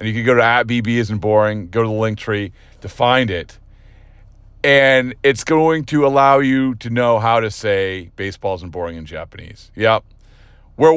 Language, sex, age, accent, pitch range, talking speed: English, male, 40-59, American, 110-155 Hz, 190 wpm